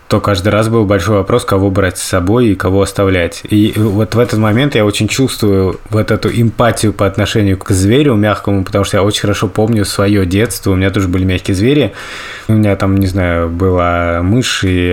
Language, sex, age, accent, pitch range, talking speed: Russian, male, 20-39, native, 95-110 Hz, 205 wpm